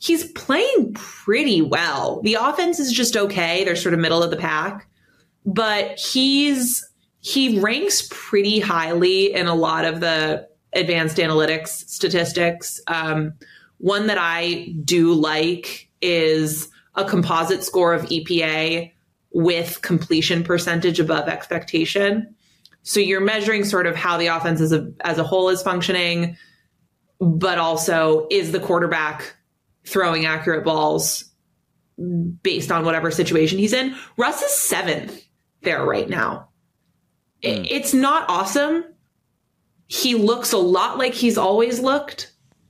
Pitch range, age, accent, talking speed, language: 165-200 Hz, 20-39, American, 130 wpm, English